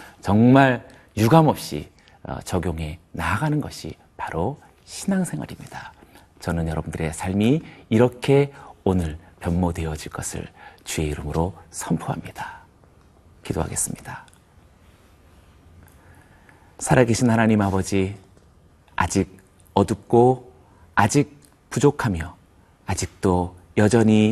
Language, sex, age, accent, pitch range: Korean, male, 40-59, native, 85-120 Hz